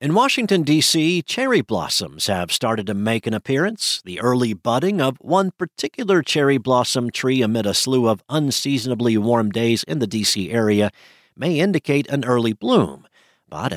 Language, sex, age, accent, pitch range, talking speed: English, male, 50-69, American, 105-135 Hz, 160 wpm